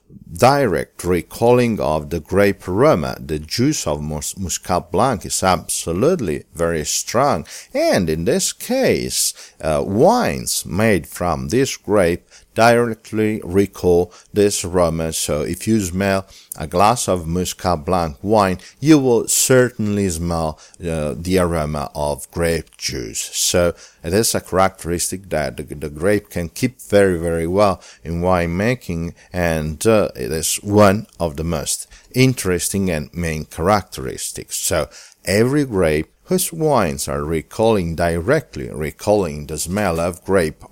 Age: 50-69